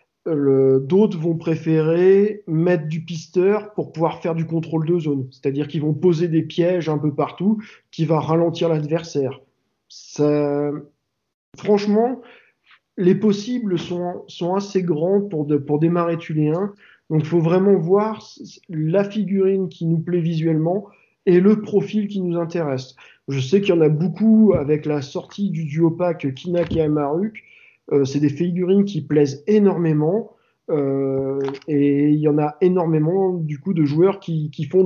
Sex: male